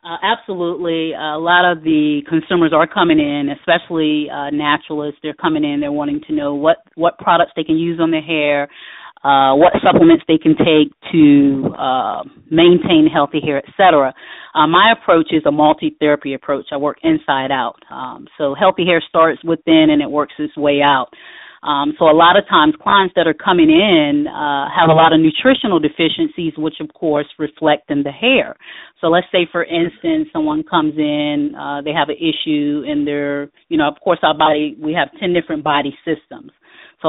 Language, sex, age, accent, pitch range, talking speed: English, female, 30-49, American, 150-185 Hz, 190 wpm